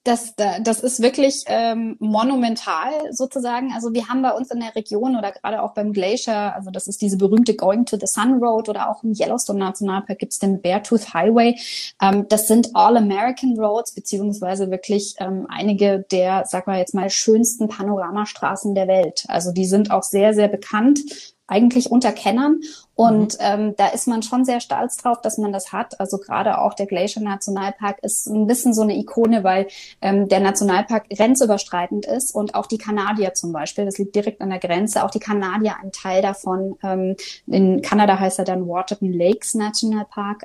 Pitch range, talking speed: 195-230 Hz, 175 wpm